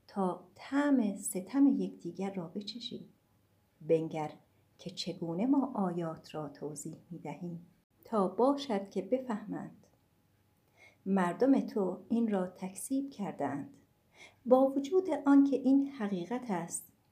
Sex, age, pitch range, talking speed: female, 50-69, 165-240 Hz, 110 wpm